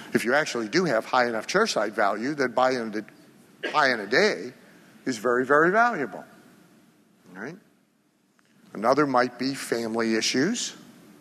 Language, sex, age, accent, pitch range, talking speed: English, male, 60-79, American, 120-140 Hz, 150 wpm